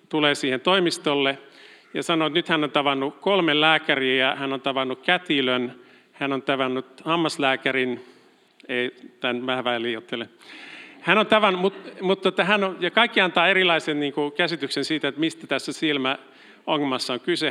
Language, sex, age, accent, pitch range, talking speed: Finnish, male, 50-69, native, 130-175 Hz, 160 wpm